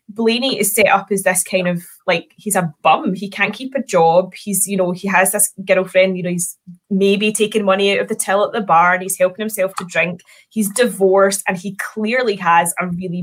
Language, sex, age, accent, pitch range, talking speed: English, female, 20-39, British, 185-220 Hz, 230 wpm